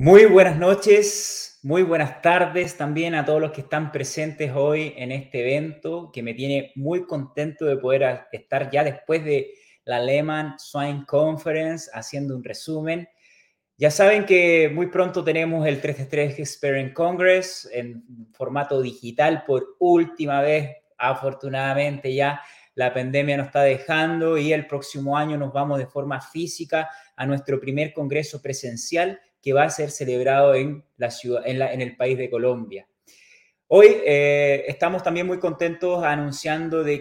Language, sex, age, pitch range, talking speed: Spanish, male, 20-39, 135-160 Hz, 155 wpm